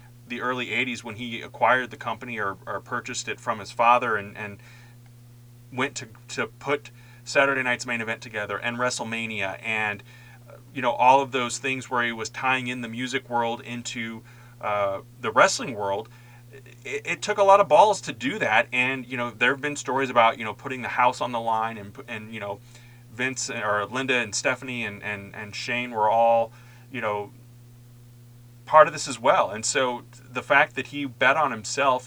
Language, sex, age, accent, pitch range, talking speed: English, male, 30-49, American, 115-125 Hz, 195 wpm